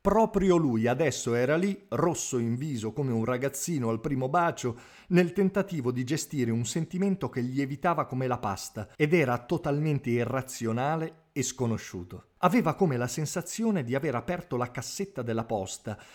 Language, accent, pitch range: Italian, native, 125-175 Hz